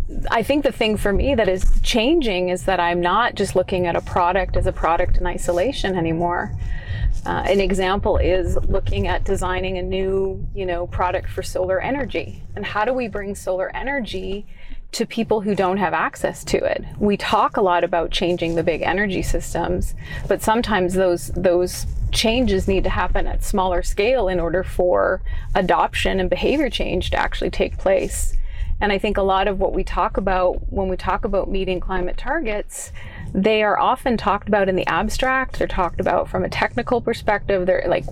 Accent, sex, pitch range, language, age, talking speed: American, female, 180-215 Hz, German, 30-49, 190 wpm